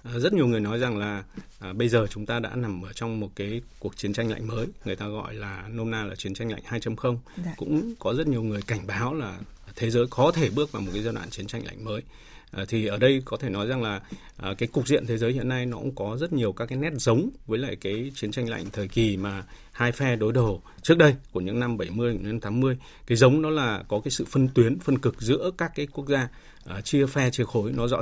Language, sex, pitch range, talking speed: Vietnamese, male, 105-130 Hz, 260 wpm